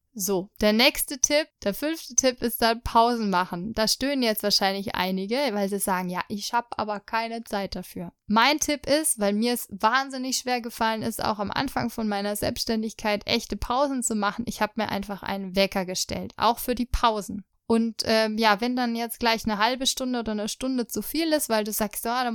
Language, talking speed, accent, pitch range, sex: German, 210 wpm, German, 210-255 Hz, female